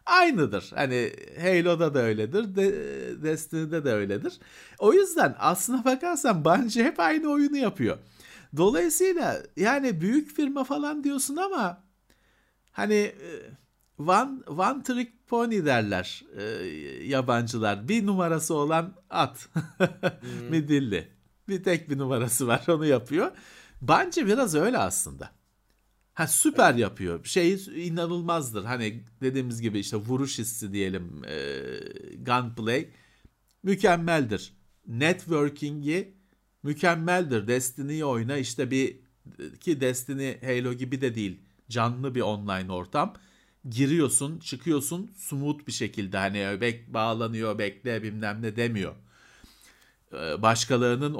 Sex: male